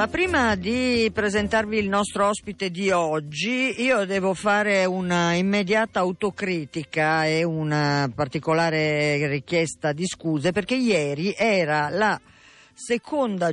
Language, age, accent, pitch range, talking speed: Italian, 50-69, native, 155-200 Hz, 110 wpm